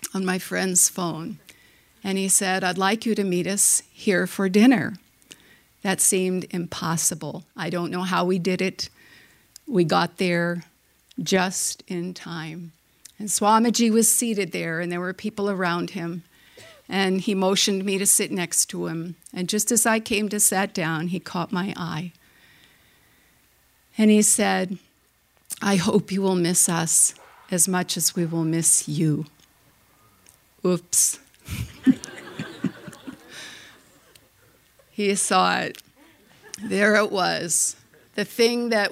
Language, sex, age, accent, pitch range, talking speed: English, female, 50-69, American, 175-210 Hz, 140 wpm